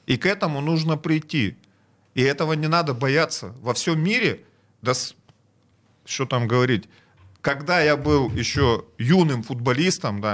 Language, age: Russian, 40-59